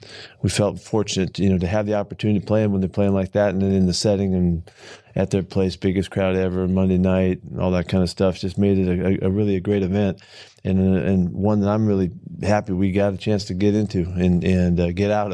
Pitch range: 90-105 Hz